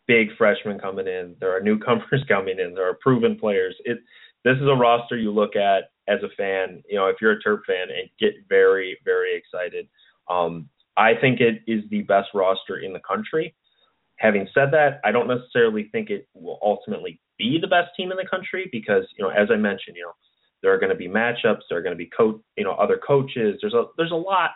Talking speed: 225 wpm